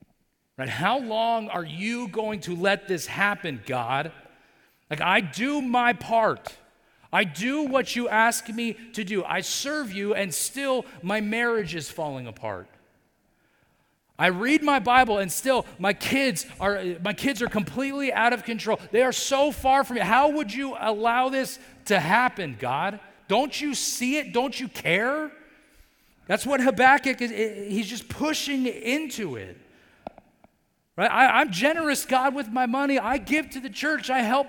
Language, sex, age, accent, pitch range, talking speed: English, male, 40-59, American, 200-265 Hz, 165 wpm